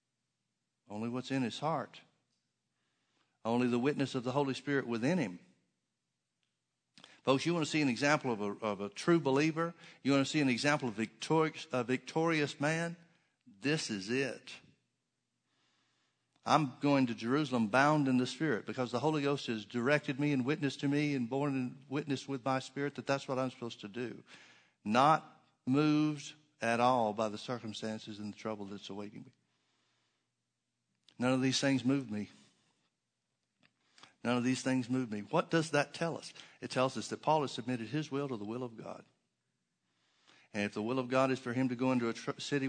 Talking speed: 185 wpm